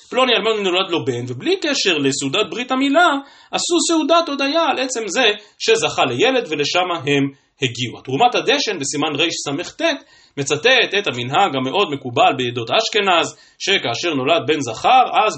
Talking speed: 145 wpm